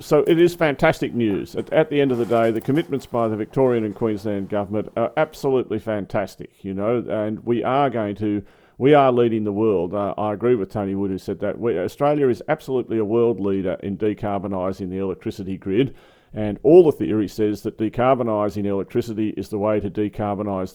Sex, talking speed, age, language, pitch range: male, 195 wpm, 40-59, English, 100-120 Hz